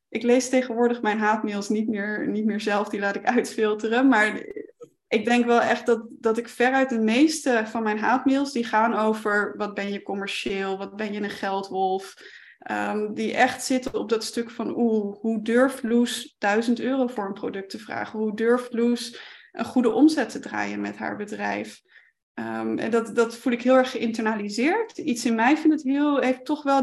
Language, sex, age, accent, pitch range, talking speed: Dutch, female, 20-39, Dutch, 220-255 Hz, 190 wpm